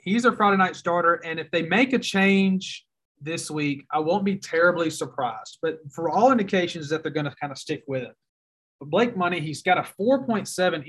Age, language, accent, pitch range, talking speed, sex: 30-49, English, American, 140-175 Hz, 210 wpm, male